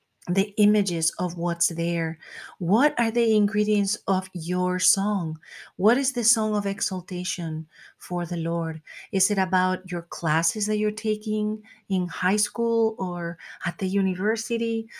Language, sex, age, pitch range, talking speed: English, female, 40-59, 175-210 Hz, 145 wpm